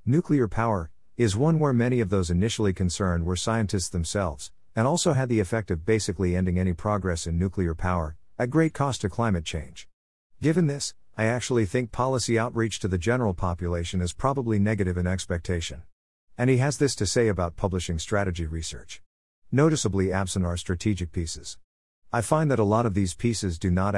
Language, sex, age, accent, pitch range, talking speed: English, male, 50-69, American, 90-115 Hz, 185 wpm